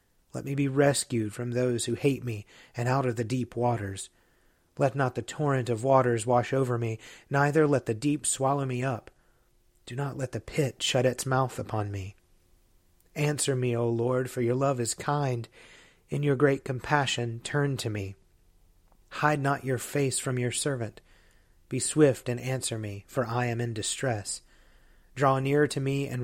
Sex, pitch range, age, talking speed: male, 110-135 Hz, 30-49, 180 wpm